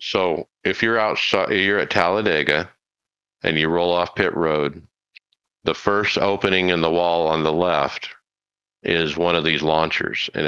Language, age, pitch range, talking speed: English, 50-69, 85-110 Hz, 160 wpm